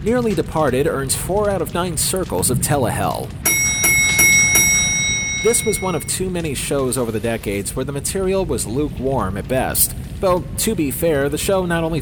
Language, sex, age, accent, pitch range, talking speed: English, male, 30-49, American, 125-175 Hz, 175 wpm